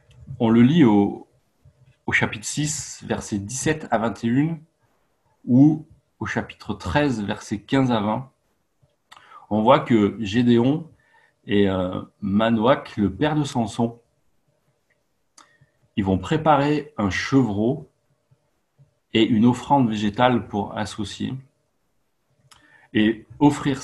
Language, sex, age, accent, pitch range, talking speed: French, male, 40-59, French, 105-140 Hz, 105 wpm